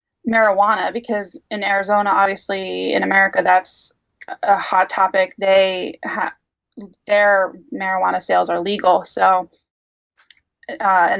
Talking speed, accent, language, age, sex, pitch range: 115 wpm, American, English, 20-39, female, 190-220 Hz